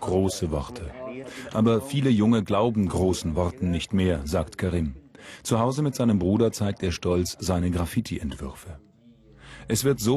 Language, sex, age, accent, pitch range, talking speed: German, male, 40-59, German, 95-130 Hz, 150 wpm